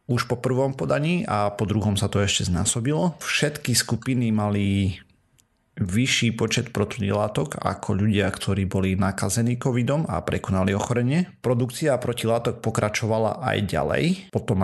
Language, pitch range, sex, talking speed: Slovak, 100-125 Hz, male, 130 wpm